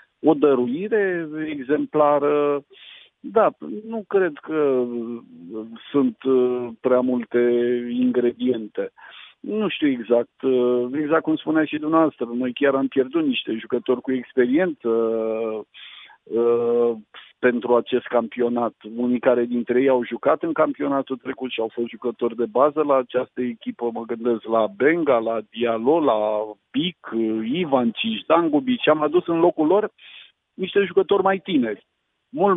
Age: 50-69